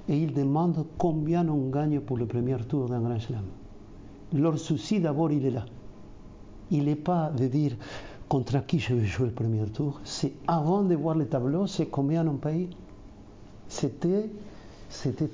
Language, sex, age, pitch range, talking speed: French, male, 50-69, 120-160 Hz, 170 wpm